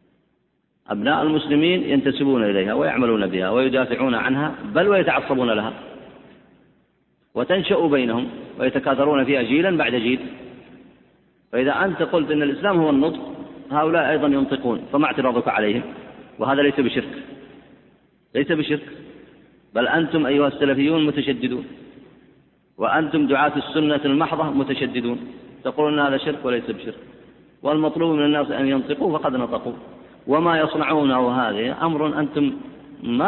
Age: 40-59